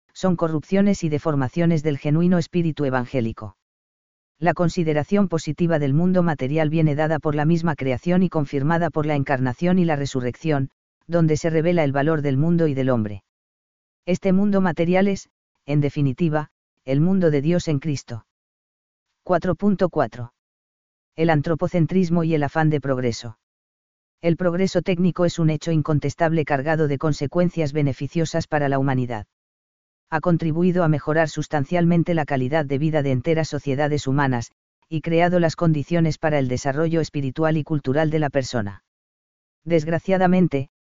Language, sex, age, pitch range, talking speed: Spanish, female, 40-59, 140-170 Hz, 145 wpm